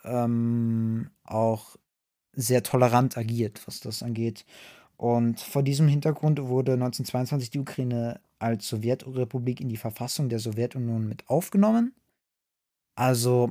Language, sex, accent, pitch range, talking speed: German, male, German, 120-150 Hz, 110 wpm